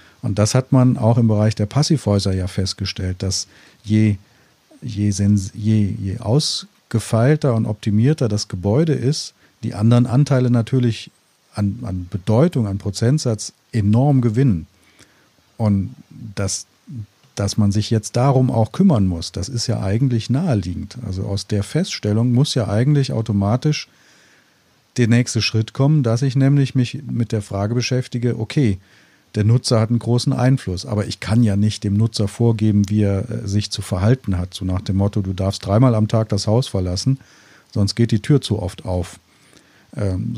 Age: 40-59